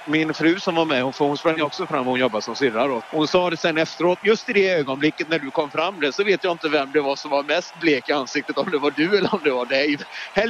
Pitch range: 135-170 Hz